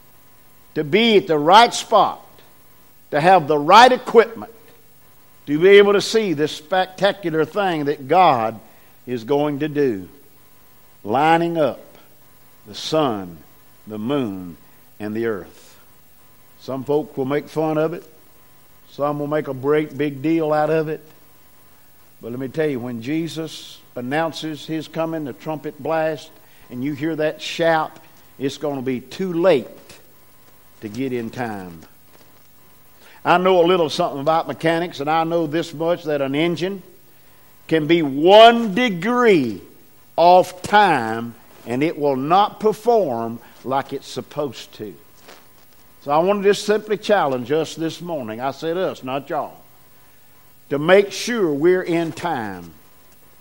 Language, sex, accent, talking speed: English, male, American, 145 wpm